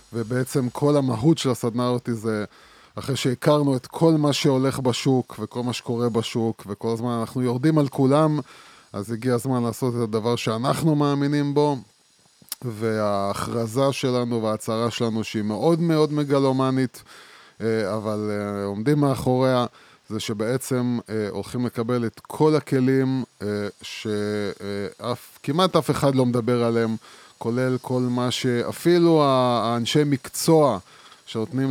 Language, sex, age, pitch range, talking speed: Hebrew, male, 20-39, 110-135 Hz, 120 wpm